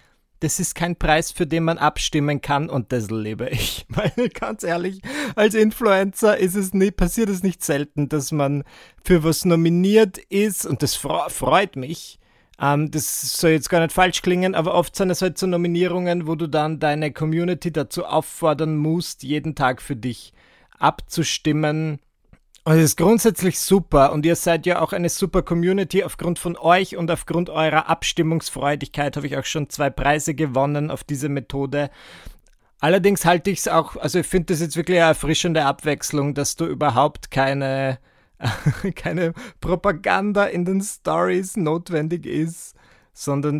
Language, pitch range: German, 145-180 Hz